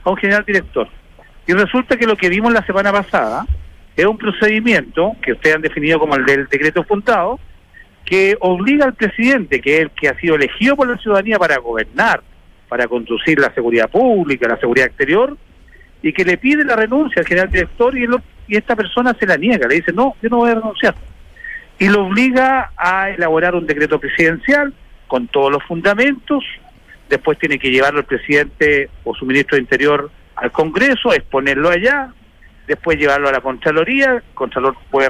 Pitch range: 150-240 Hz